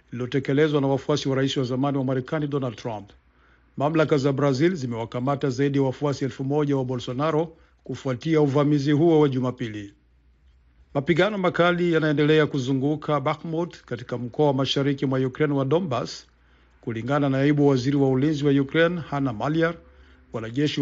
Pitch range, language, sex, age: 130-155 Hz, Swahili, male, 50-69